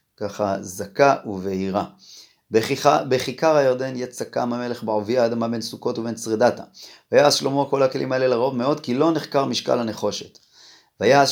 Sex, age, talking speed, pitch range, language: male, 30-49, 145 wpm, 110-140 Hz, Hebrew